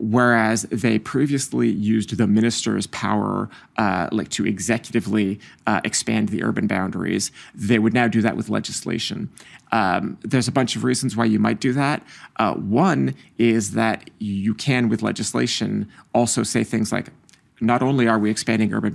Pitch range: 110-120 Hz